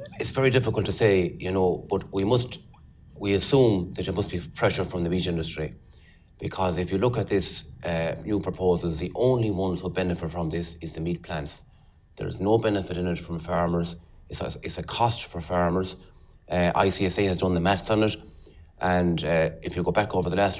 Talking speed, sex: 210 wpm, male